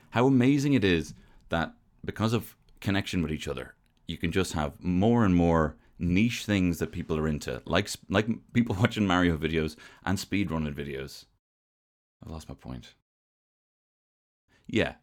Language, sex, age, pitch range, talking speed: English, male, 30-49, 85-125 Hz, 155 wpm